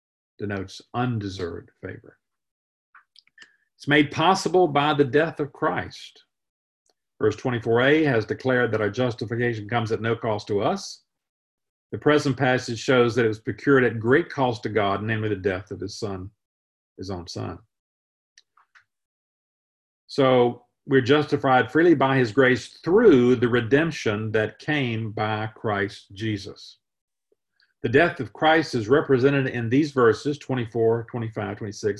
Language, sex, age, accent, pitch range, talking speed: English, male, 50-69, American, 110-140 Hz, 135 wpm